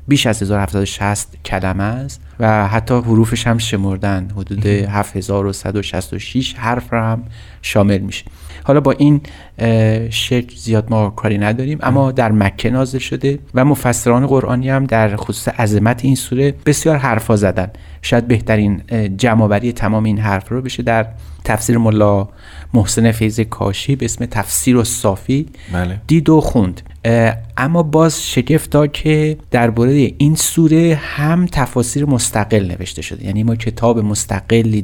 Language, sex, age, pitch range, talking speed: Persian, male, 30-49, 100-125 Hz, 140 wpm